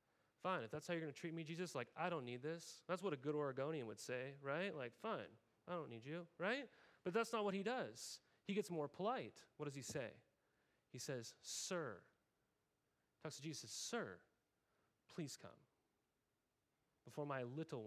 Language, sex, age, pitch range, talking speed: English, male, 30-49, 150-200 Hz, 190 wpm